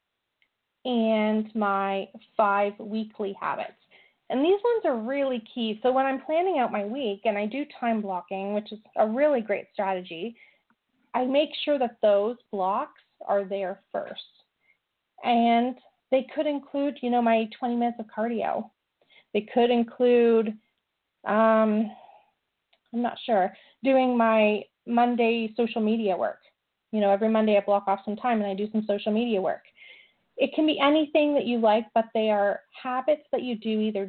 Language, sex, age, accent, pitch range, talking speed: English, female, 30-49, American, 210-255 Hz, 165 wpm